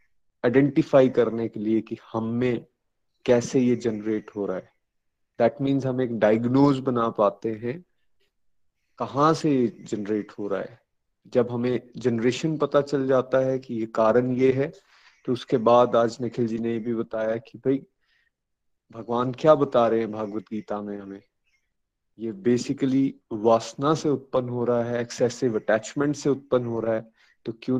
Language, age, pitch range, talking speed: Hindi, 30-49, 115-135 Hz, 160 wpm